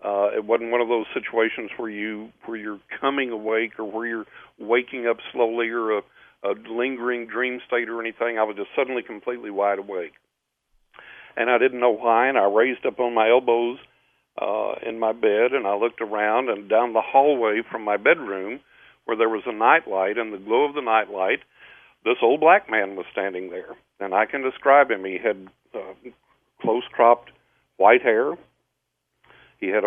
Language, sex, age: English, male, 50-69